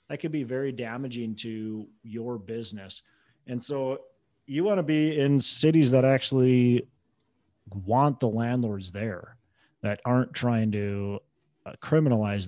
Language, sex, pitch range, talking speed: English, male, 105-135 Hz, 130 wpm